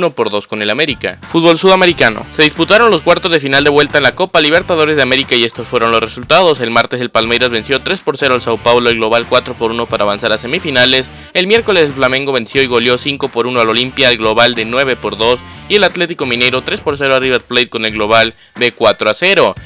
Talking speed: 245 wpm